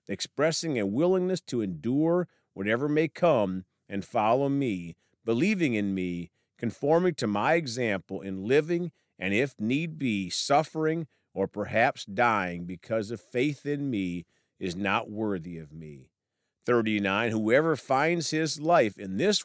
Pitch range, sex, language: 100-155 Hz, male, English